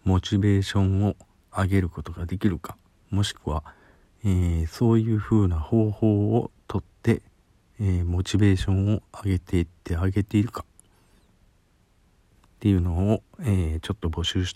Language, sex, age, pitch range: Japanese, male, 50-69, 85-105 Hz